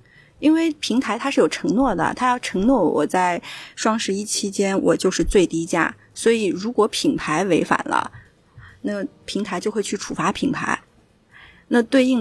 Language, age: Chinese, 30-49